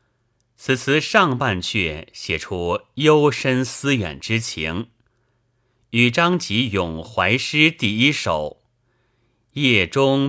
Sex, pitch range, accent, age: male, 95-125 Hz, native, 30-49